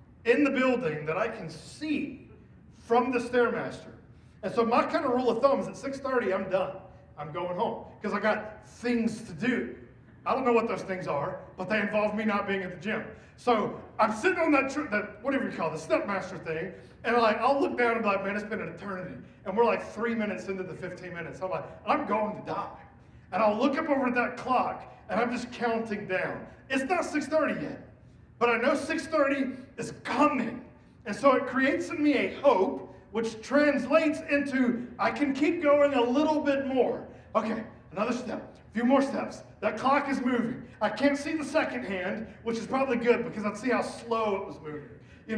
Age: 40-59